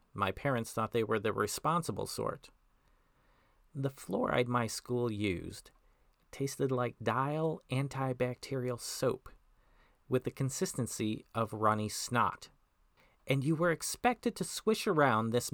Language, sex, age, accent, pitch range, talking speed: English, male, 40-59, American, 120-155 Hz, 125 wpm